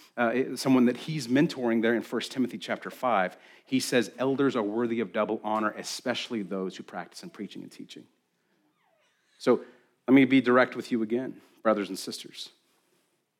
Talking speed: 170 wpm